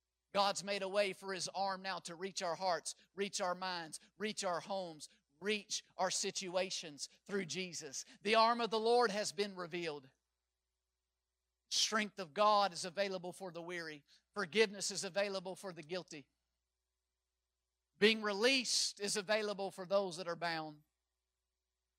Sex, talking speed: male, 145 wpm